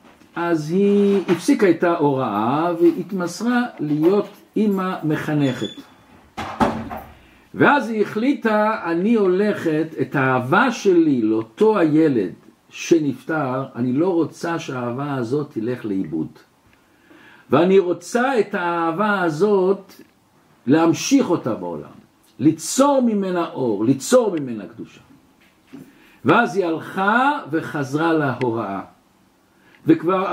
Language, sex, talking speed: Hebrew, male, 95 wpm